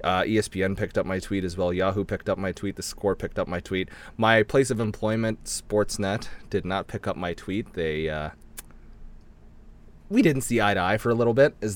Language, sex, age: English, male, 30-49